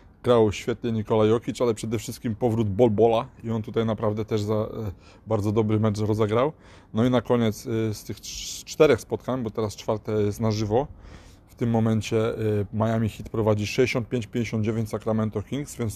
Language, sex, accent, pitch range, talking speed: Polish, male, native, 105-115 Hz, 160 wpm